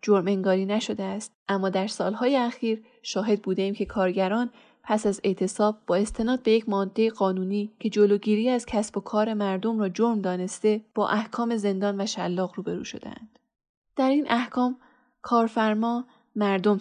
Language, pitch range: Persian, 195-235 Hz